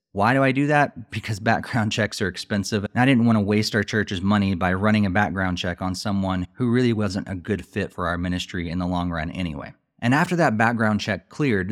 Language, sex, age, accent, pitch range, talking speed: English, male, 30-49, American, 95-115 Hz, 235 wpm